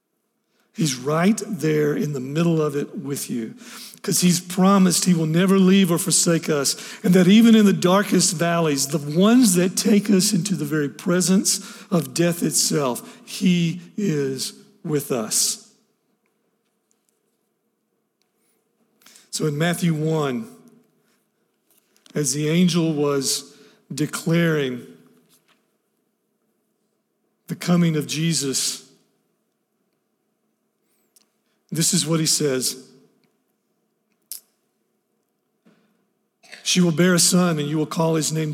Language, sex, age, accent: English, male, 50-69, American